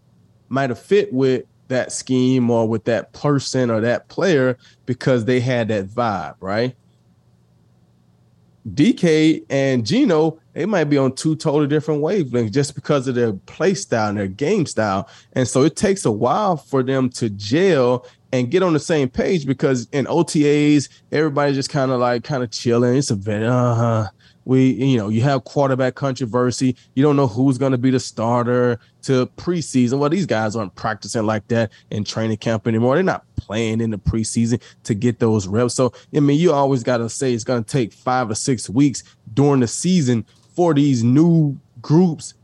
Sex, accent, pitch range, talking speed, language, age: male, American, 115-140 Hz, 190 wpm, English, 20-39